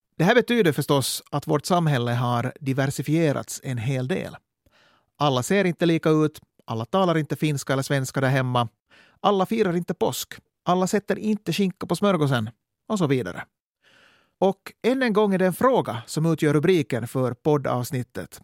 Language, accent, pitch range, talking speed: Swedish, Finnish, 135-195 Hz, 165 wpm